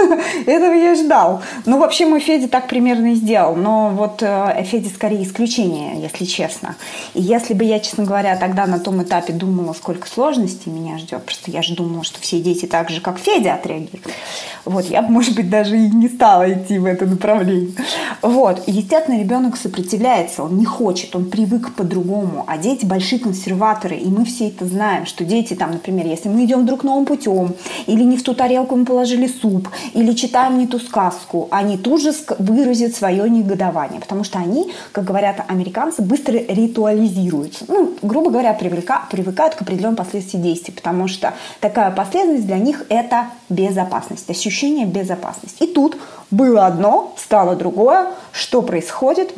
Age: 20-39